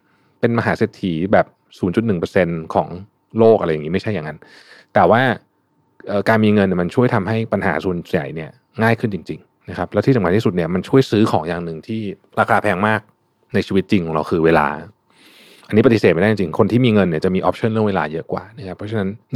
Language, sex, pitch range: Thai, male, 95-115 Hz